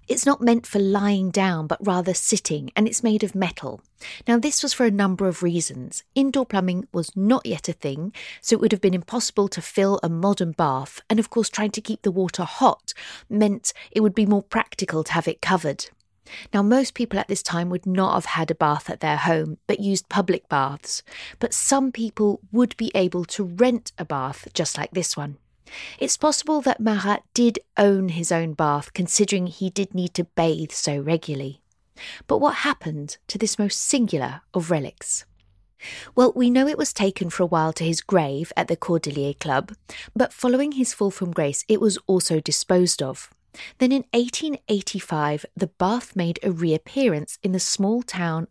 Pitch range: 165-220 Hz